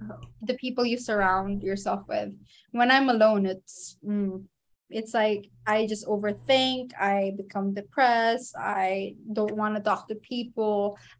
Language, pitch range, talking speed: Filipino, 205-235 Hz, 145 wpm